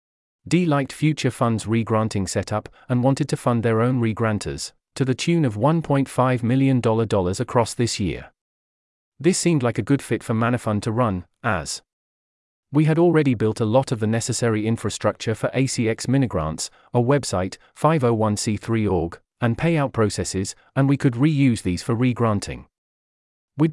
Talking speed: 150 wpm